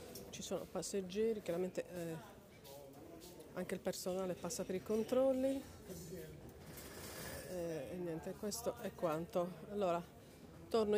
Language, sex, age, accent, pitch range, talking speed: Italian, female, 40-59, native, 175-205 Hz, 110 wpm